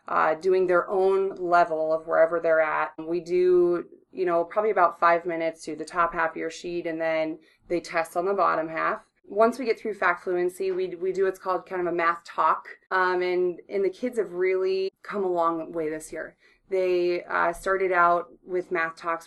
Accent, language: American, English